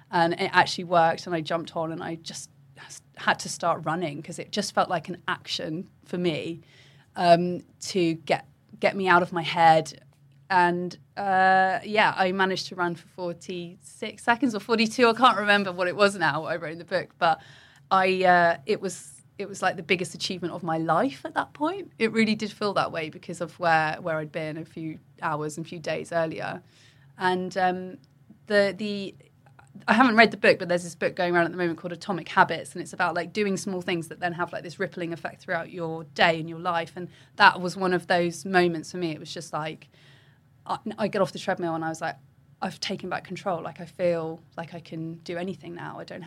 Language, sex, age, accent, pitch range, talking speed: English, female, 30-49, British, 160-185 Hz, 225 wpm